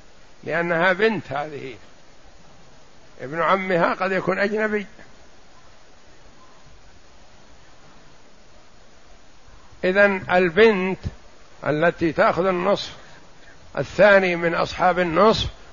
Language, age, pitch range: Arabic, 60-79, 165-205 Hz